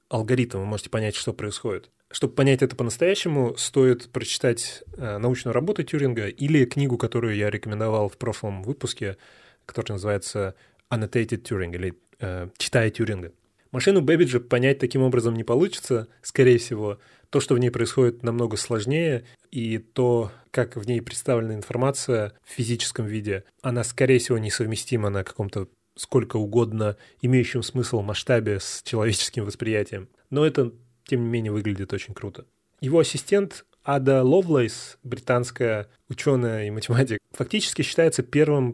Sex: male